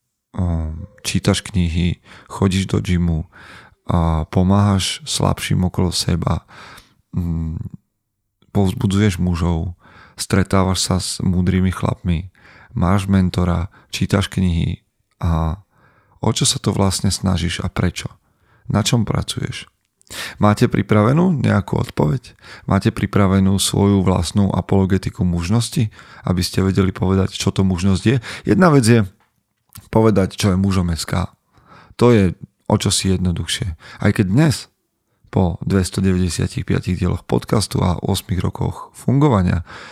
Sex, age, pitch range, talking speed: male, 40-59, 90-105 Hz, 115 wpm